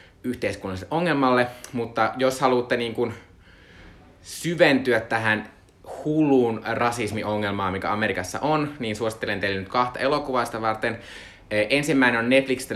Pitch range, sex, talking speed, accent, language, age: 95-120 Hz, male, 115 wpm, native, Finnish, 20-39